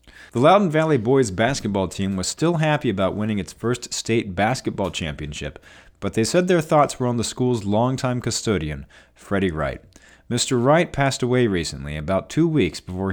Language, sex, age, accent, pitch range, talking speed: English, male, 40-59, American, 85-125 Hz, 175 wpm